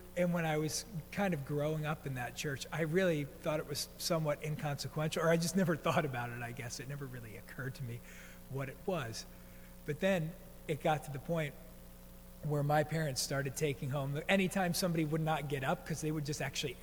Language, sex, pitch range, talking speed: English, male, 130-160 Hz, 215 wpm